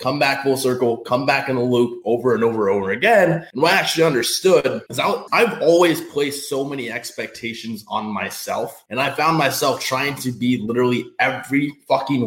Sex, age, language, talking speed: male, 20-39, English, 195 wpm